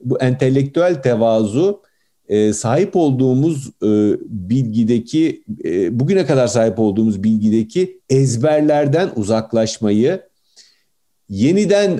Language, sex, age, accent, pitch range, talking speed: Turkish, male, 50-69, native, 110-160 Hz, 85 wpm